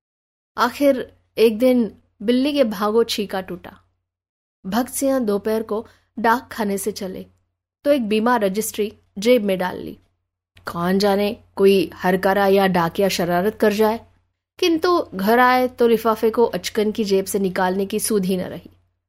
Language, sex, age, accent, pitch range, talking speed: Hindi, female, 20-39, native, 185-235 Hz, 145 wpm